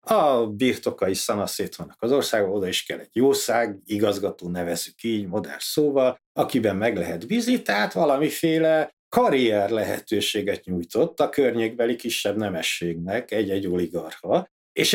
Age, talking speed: 60-79, 130 wpm